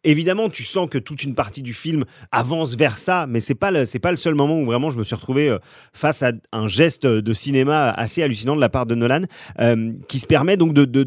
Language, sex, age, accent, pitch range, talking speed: French, male, 30-49, French, 125-160 Hz, 255 wpm